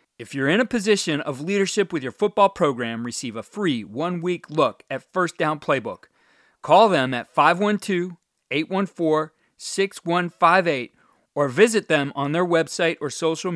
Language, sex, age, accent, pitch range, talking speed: English, male, 40-59, American, 135-185 Hz, 140 wpm